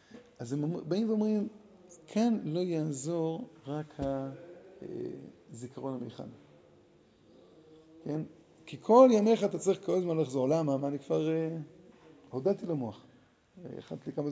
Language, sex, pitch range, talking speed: Hebrew, male, 130-175 Hz, 115 wpm